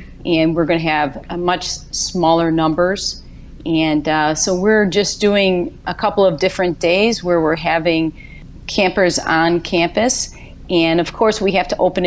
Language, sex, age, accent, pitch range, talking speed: English, female, 40-59, American, 155-185 Hz, 165 wpm